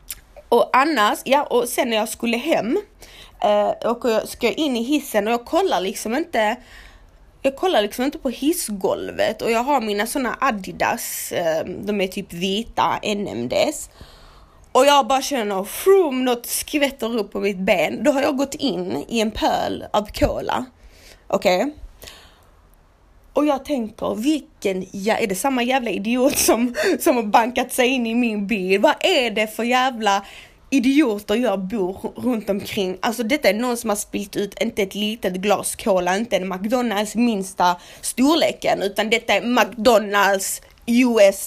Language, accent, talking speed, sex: Swedish, native, 165 wpm, female